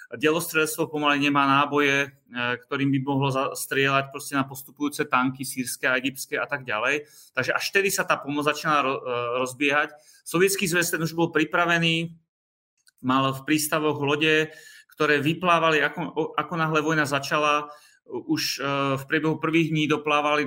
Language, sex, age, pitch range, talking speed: Slovak, male, 30-49, 140-165 Hz, 145 wpm